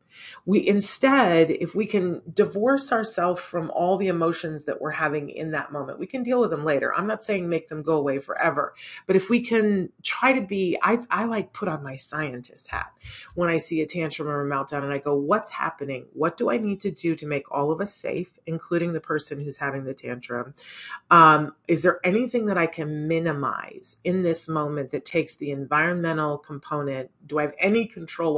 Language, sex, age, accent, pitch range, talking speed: English, female, 30-49, American, 150-190 Hz, 210 wpm